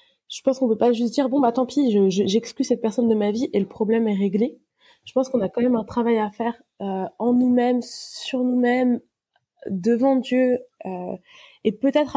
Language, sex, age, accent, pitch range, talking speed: French, female, 20-39, French, 195-245 Hz, 215 wpm